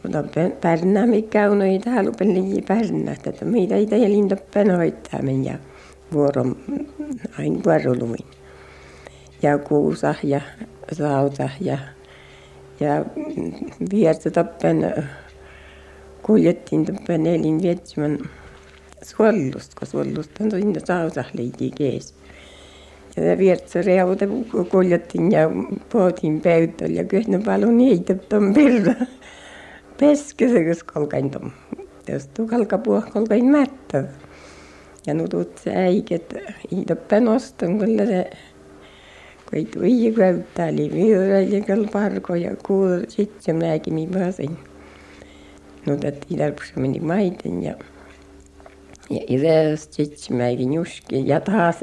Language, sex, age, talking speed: Finnish, female, 60-79, 100 wpm